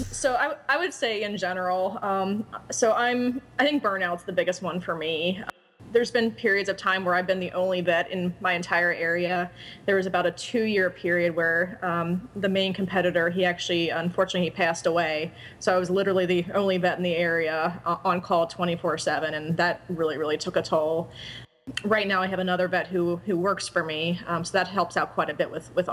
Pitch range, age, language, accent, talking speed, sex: 165-185 Hz, 20-39, English, American, 215 wpm, female